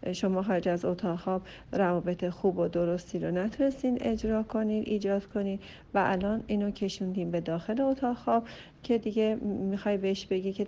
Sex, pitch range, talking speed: female, 180-215 Hz, 165 wpm